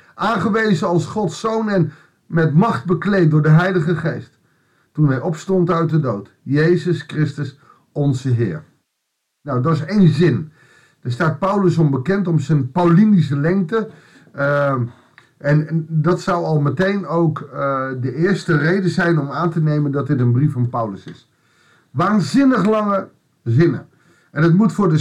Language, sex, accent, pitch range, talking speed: Dutch, male, Dutch, 140-175 Hz, 165 wpm